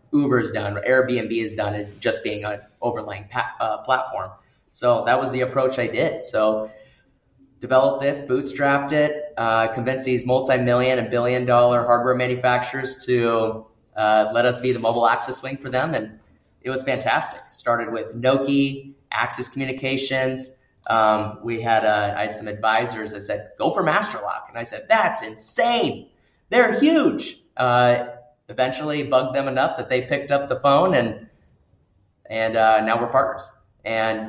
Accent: American